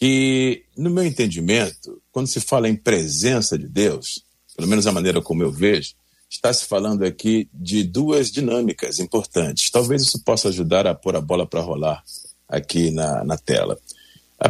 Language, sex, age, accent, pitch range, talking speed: Portuguese, male, 50-69, Brazilian, 100-145 Hz, 170 wpm